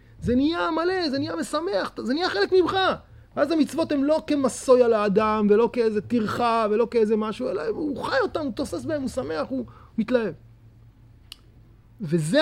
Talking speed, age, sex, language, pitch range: 175 wpm, 30-49, male, Hebrew, 205-300 Hz